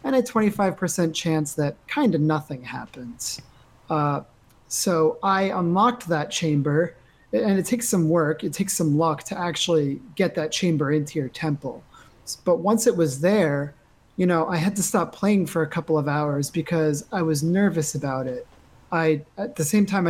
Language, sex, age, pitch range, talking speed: English, male, 30-49, 150-185 Hz, 180 wpm